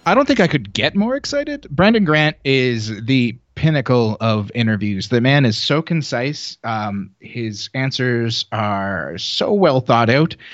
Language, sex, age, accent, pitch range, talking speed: English, male, 30-49, American, 110-145 Hz, 160 wpm